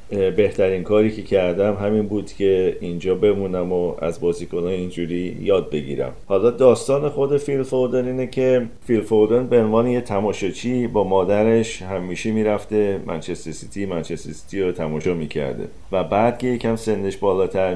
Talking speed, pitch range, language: 155 wpm, 85-110 Hz, Persian